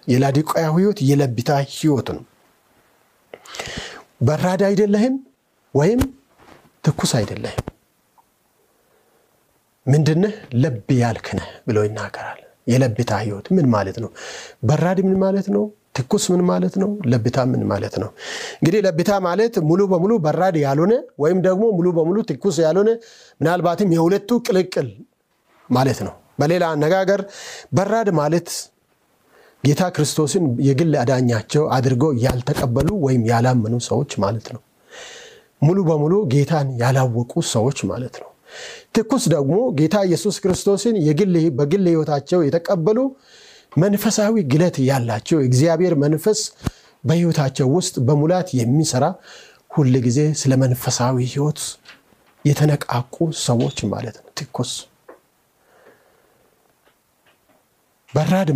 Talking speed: 85 wpm